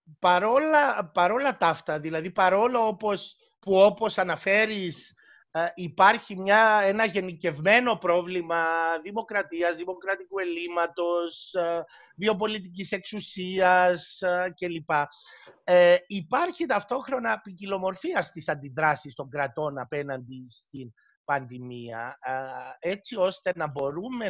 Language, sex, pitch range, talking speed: Greek, male, 165-210 Hz, 90 wpm